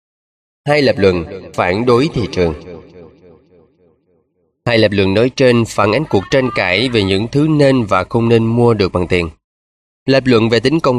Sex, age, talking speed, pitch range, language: male, 20-39, 180 wpm, 95-125 Hz, Vietnamese